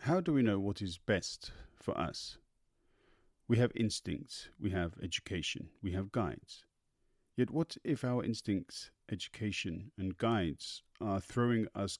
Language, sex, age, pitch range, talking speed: English, male, 50-69, 100-125 Hz, 145 wpm